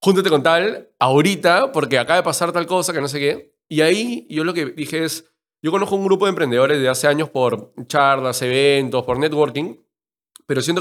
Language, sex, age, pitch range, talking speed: Spanish, male, 20-39, 140-170 Hz, 205 wpm